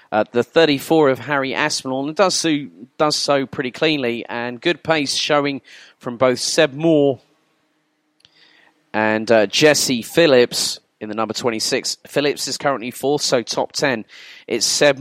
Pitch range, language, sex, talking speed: 125-155 Hz, English, male, 150 wpm